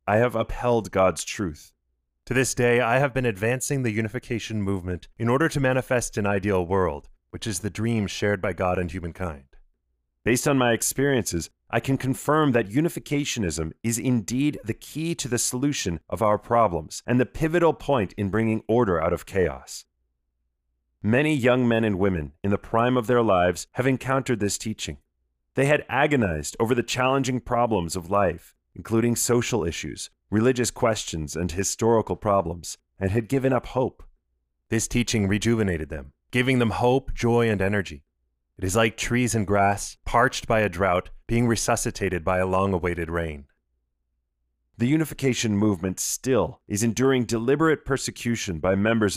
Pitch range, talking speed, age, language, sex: 90-125 Hz, 160 wpm, 30-49, English, male